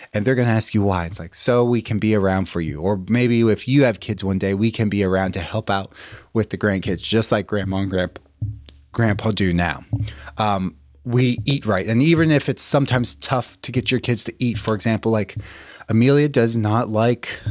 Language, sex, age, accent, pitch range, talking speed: English, male, 30-49, American, 100-125 Hz, 225 wpm